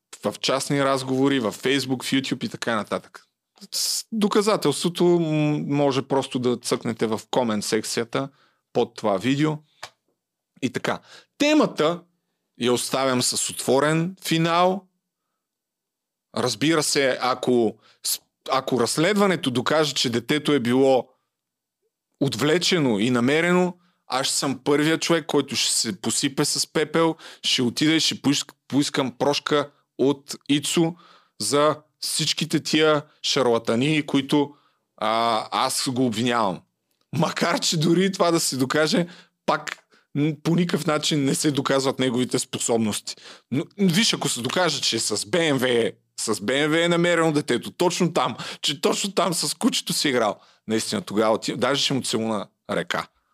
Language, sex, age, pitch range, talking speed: Bulgarian, male, 40-59, 125-165 Hz, 135 wpm